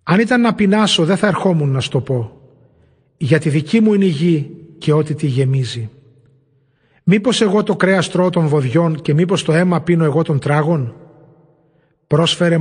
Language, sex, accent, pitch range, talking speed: Greek, male, native, 145-175 Hz, 175 wpm